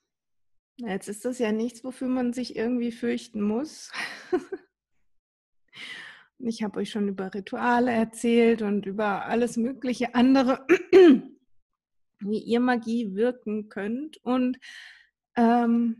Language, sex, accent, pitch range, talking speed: German, female, German, 210-260 Hz, 115 wpm